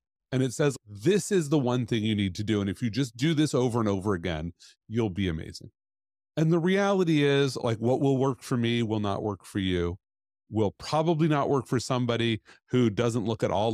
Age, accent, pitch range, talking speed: 40-59, American, 105-140 Hz, 225 wpm